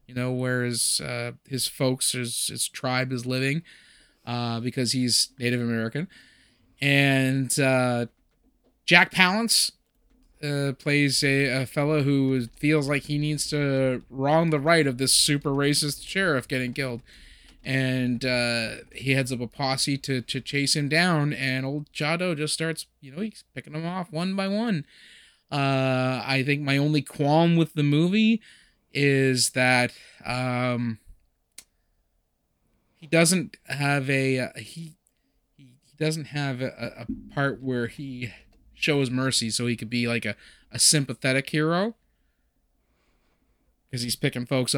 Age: 20-39